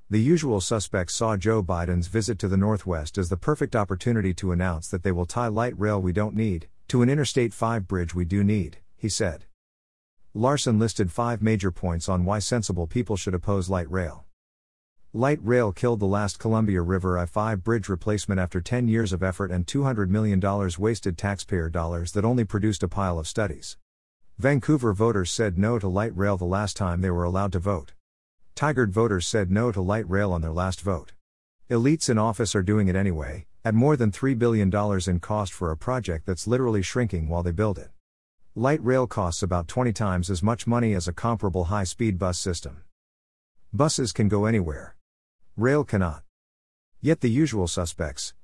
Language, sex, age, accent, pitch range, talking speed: English, male, 50-69, American, 90-115 Hz, 185 wpm